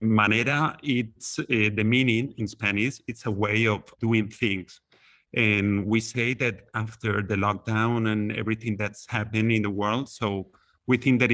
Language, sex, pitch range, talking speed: English, male, 105-120 Hz, 165 wpm